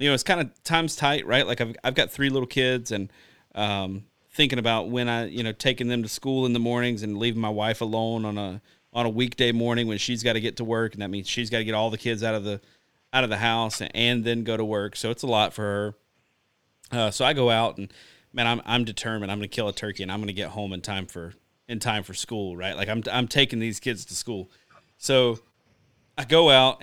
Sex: male